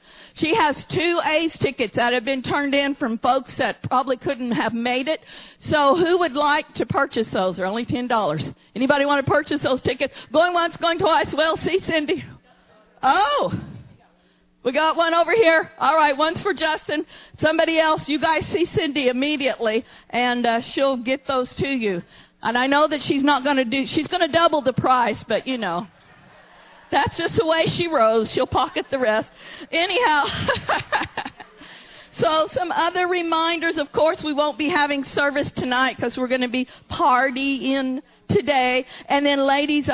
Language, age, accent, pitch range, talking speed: English, 50-69, American, 250-310 Hz, 175 wpm